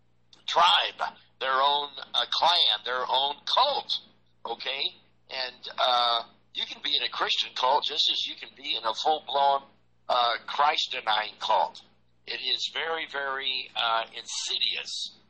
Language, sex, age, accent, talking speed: English, male, 60-79, American, 135 wpm